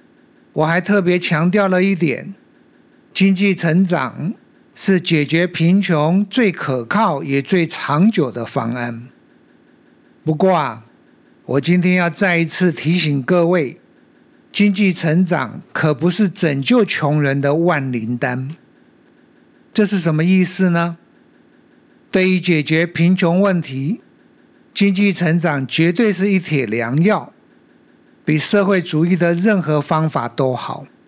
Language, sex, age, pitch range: Chinese, male, 50-69, 155-225 Hz